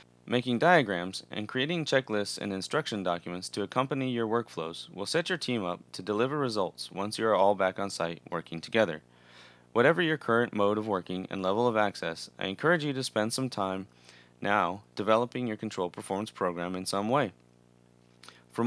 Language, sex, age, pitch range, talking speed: English, male, 30-49, 85-120 Hz, 180 wpm